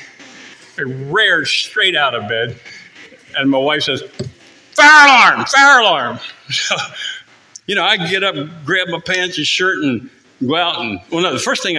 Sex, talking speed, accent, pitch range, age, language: male, 170 wpm, American, 125-180 Hz, 50-69, English